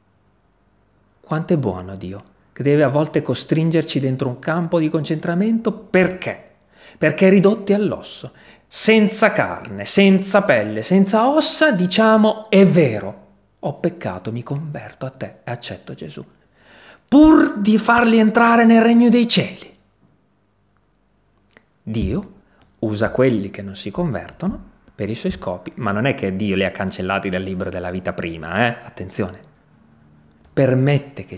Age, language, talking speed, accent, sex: 30-49, Italian, 140 wpm, native, male